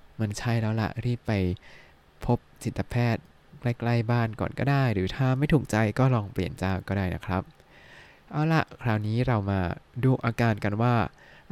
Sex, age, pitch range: male, 20-39, 90-125 Hz